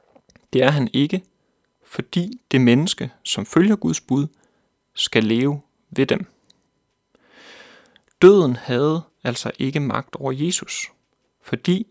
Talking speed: 115 wpm